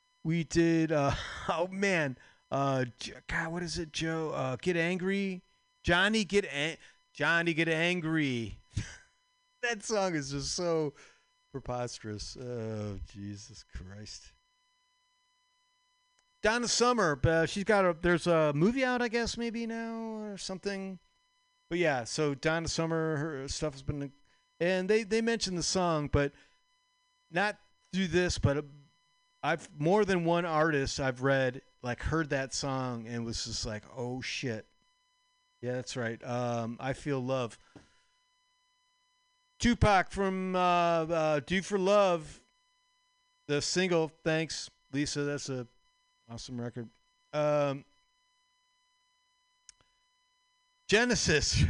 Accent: American